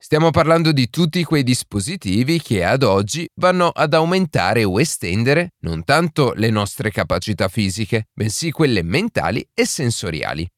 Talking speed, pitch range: 140 wpm, 100-155 Hz